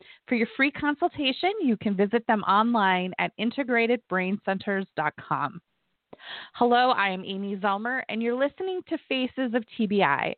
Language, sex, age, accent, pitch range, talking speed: English, female, 30-49, American, 185-250 Hz, 125 wpm